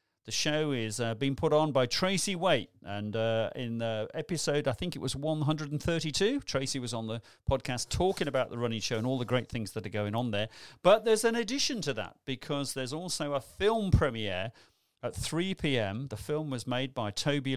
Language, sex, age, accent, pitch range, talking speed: English, male, 40-59, British, 115-155 Hz, 210 wpm